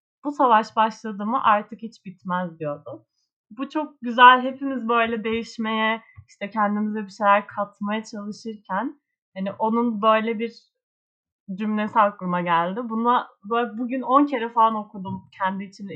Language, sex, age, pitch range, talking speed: Turkish, female, 30-49, 185-255 Hz, 135 wpm